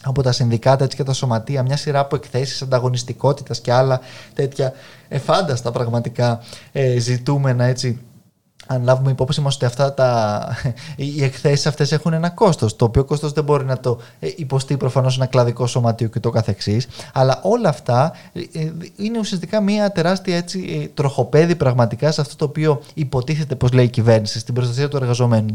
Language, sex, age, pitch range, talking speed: Greek, male, 20-39, 125-170 Hz, 155 wpm